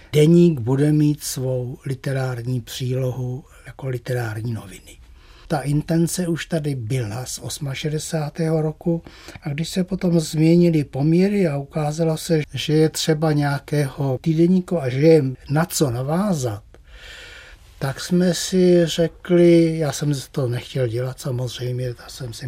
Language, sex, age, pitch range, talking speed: Czech, male, 60-79, 125-160 Hz, 135 wpm